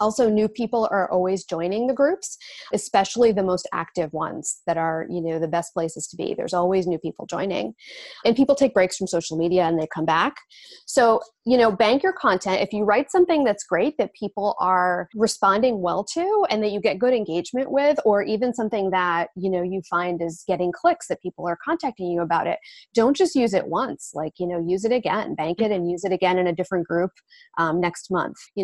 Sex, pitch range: female, 180-245 Hz